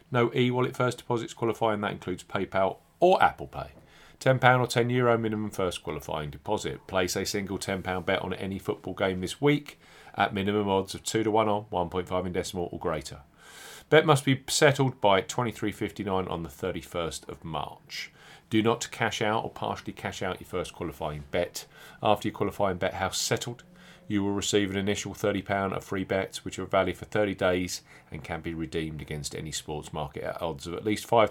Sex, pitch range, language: male, 95-130 Hz, English